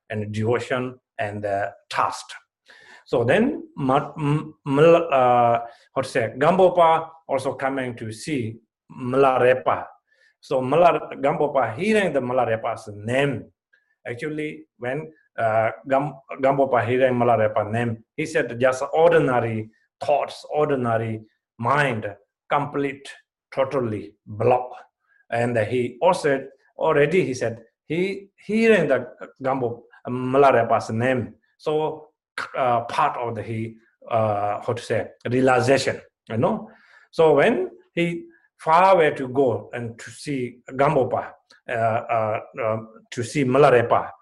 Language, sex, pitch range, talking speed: English, male, 115-155 Hz, 115 wpm